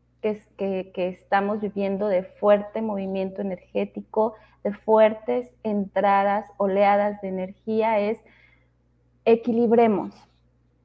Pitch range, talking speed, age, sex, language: 195-225 Hz, 90 wpm, 30-49, female, Spanish